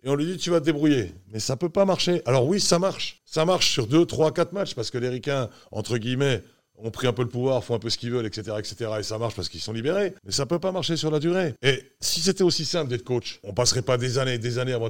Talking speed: 310 wpm